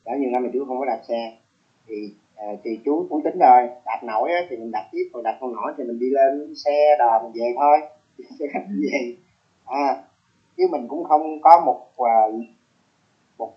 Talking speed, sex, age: 195 wpm, male, 30-49